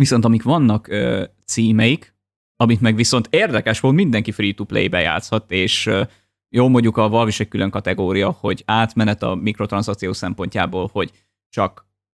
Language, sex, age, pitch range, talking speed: Hungarian, male, 20-39, 100-125 Hz, 140 wpm